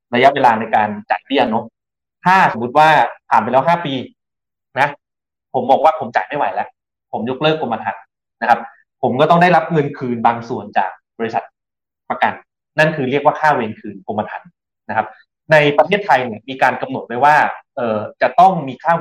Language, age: Thai, 20-39